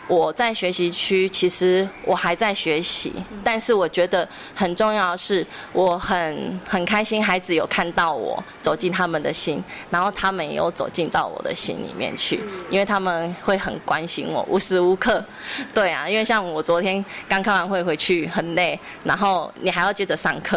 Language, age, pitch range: Chinese, 20-39, 180-220 Hz